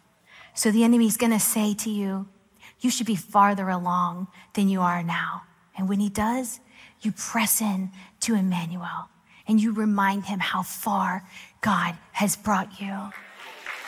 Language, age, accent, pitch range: English, 30-49, American, 220-300 Hz